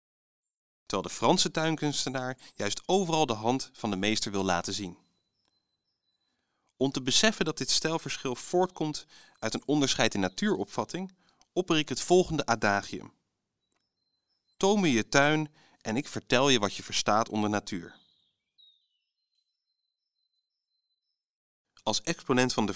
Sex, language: male, Dutch